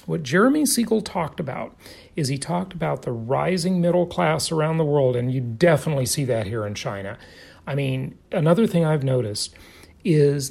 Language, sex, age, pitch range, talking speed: English, male, 40-59, 135-190 Hz, 175 wpm